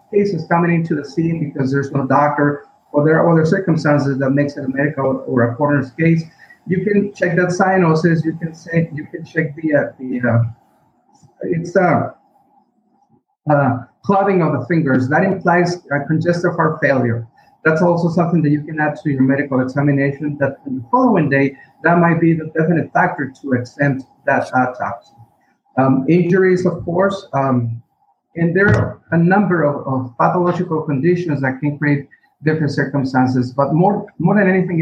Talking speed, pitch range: 175 wpm, 140-175 Hz